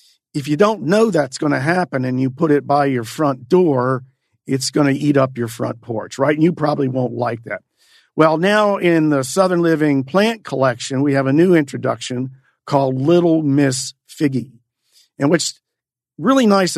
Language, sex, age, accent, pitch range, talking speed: English, male, 50-69, American, 130-160 Hz, 185 wpm